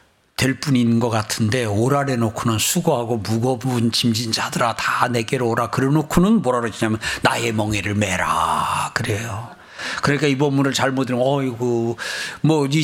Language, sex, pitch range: Korean, male, 120-165 Hz